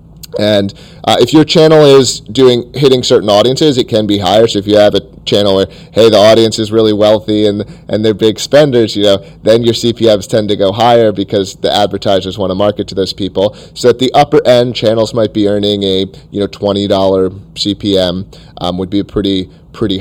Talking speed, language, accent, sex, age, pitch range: 210 wpm, English, American, male, 30-49, 100-120 Hz